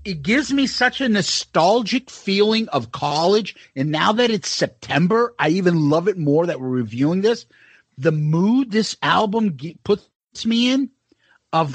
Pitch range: 150-220 Hz